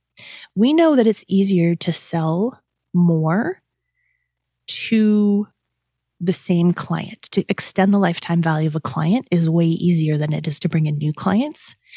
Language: English